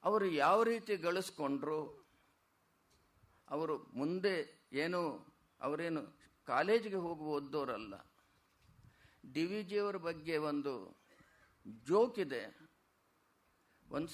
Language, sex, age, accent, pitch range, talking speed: Kannada, male, 50-69, native, 155-205 Hz, 75 wpm